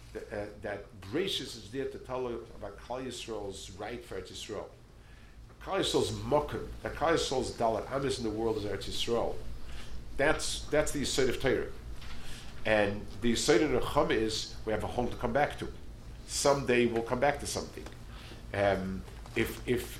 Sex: male